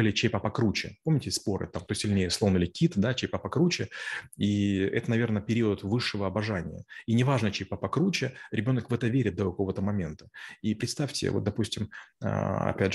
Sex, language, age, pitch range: male, Russian, 30-49, 95-115 Hz